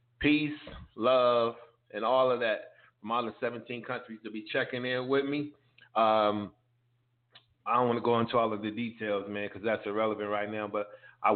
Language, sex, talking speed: English, male, 185 wpm